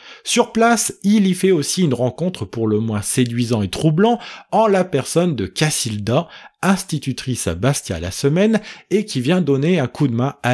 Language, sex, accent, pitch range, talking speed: French, male, French, 120-190 Hz, 190 wpm